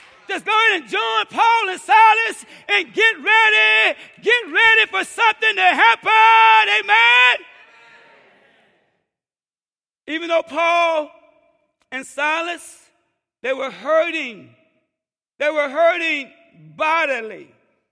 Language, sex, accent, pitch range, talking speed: English, male, American, 295-365 Hz, 100 wpm